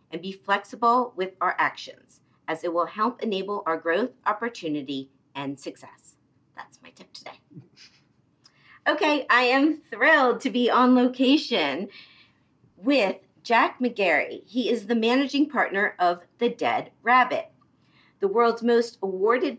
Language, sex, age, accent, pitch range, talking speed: English, female, 40-59, American, 165-235 Hz, 135 wpm